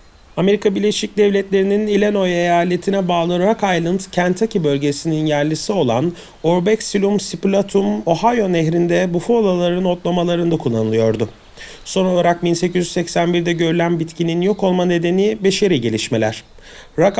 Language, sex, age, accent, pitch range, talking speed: Turkish, male, 40-59, native, 155-200 Hz, 100 wpm